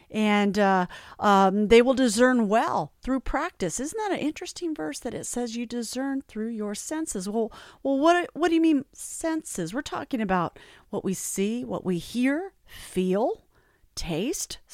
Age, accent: 40-59, American